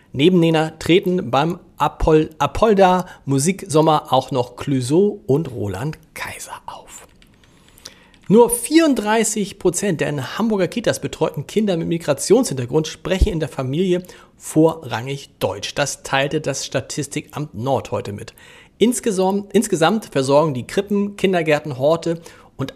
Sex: male